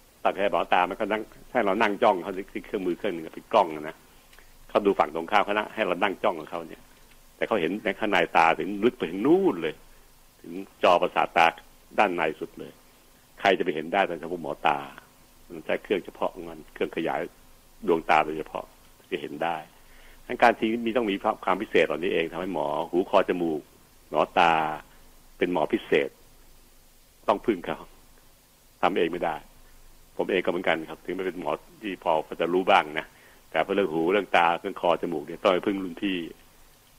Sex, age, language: male, 70-89, Thai